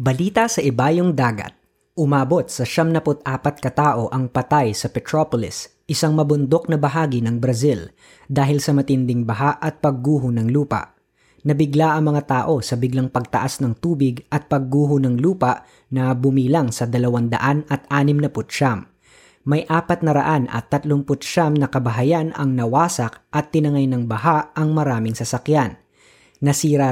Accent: native